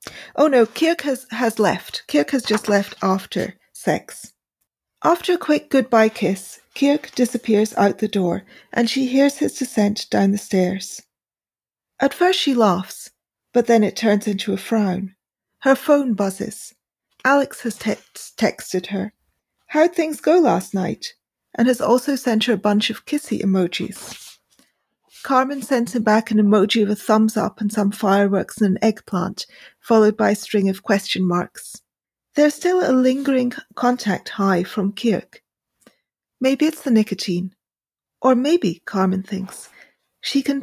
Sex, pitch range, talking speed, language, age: female, 200-255 Hz, 155 wpm, English, 40-59